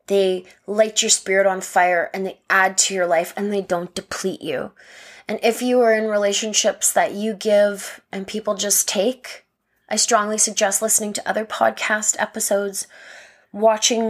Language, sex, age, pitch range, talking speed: English, female, 20-39, 190-220 Hz, 165 wpm